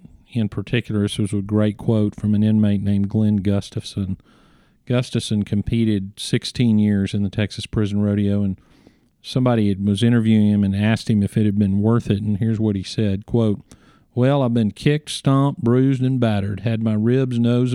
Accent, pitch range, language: American, 100-115 Hz, English